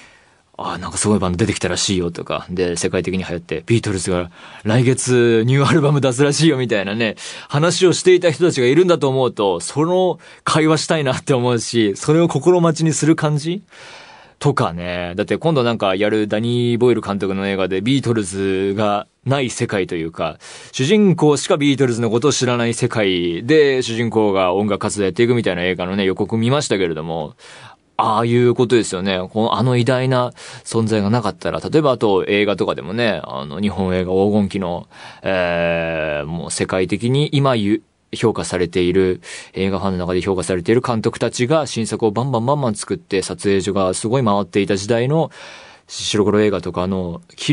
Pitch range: 95-135 Hz